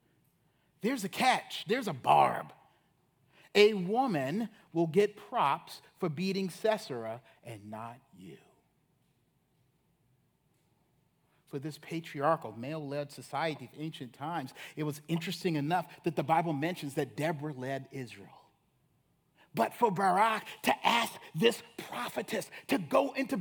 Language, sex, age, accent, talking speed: English, male, 40-59, American, 120 wpm